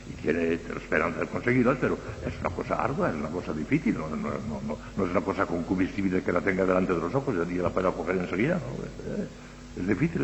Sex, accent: male, Spanish